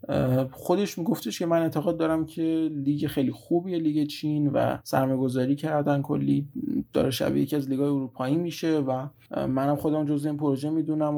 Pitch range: 130-150 Hz